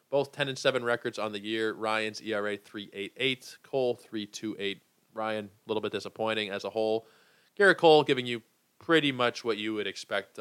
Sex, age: male, 20-39